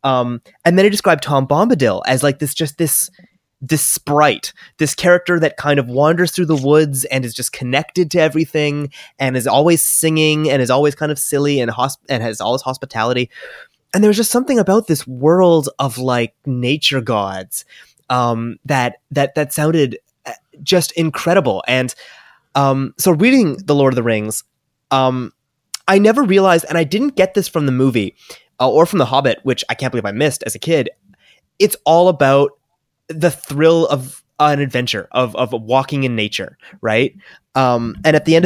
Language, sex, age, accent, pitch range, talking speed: English, male, 20-39, American, 120-155 Hz, 185 wpm